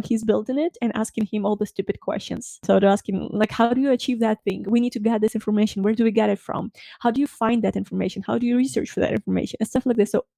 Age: 20-39